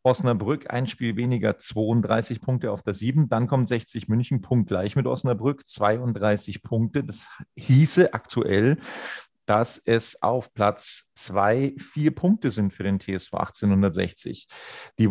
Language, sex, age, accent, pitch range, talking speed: German, male, 40-59, German, 110-135 Hz, 140 wpm